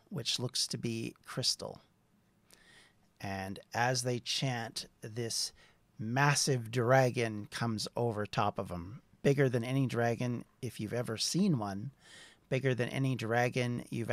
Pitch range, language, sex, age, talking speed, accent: 115-140 Hz, English, male, 40-59, 130 wpm, American